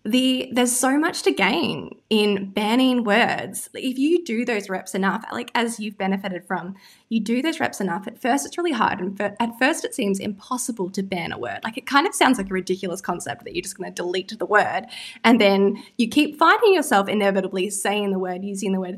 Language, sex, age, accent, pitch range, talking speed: English, female, 20-39, Australian, 195-260 Hz, 215 wpm